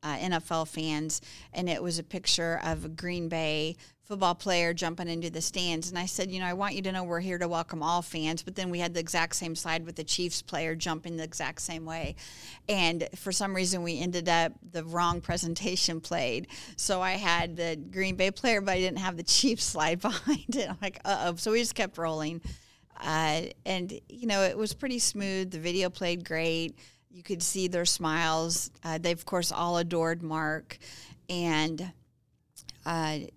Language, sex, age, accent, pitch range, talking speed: English, female, 40-59, American, 160-185 Hz, 200 wpm